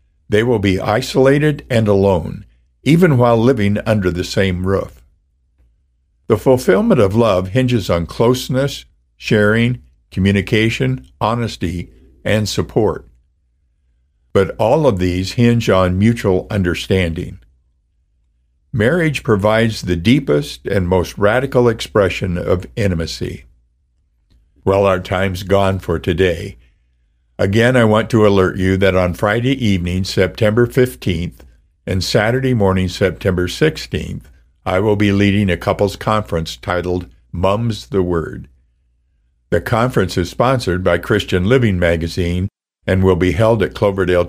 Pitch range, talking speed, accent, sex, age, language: 80-110 Hz, 125 wpm, American, male, 60-79, English